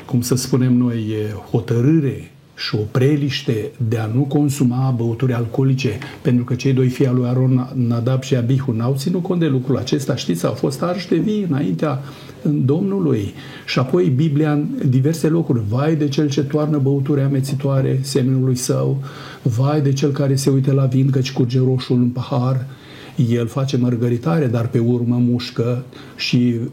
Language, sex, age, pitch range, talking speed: Romanian, male, 50-69, 120-140 Hz, 170 wpm